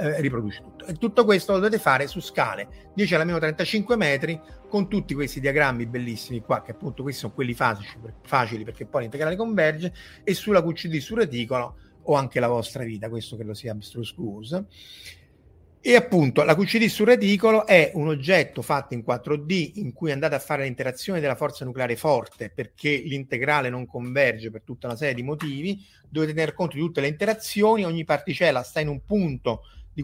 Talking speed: 190 wpm